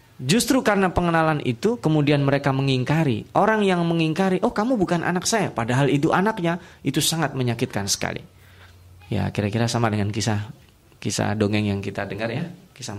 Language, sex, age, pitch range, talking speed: Indonesian, male, 20-39, 115-165 Hz, 155 wpm